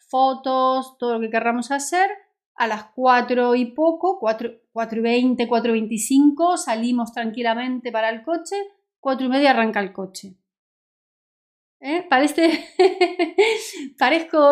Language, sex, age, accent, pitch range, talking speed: Spanish, female, 30-49, Spanish, 230-295 Hz, 130 wpm